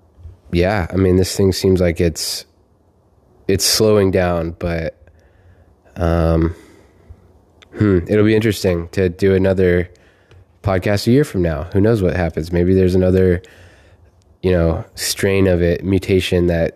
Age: 20-39